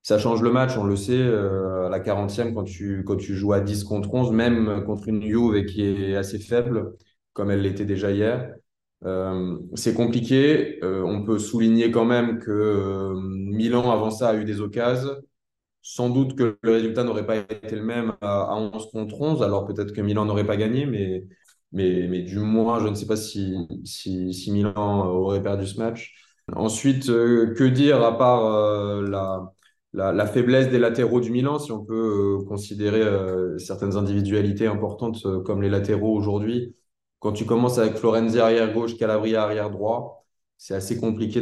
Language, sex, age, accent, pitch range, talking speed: French, male, 20-39, French, 100-115 Hz, 190 wpm